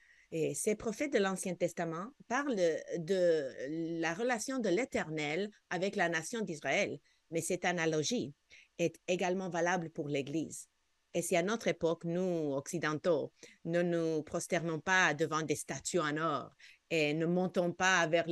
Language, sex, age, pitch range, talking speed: French, female, 50-69, 155-185 Hz, 145 wpm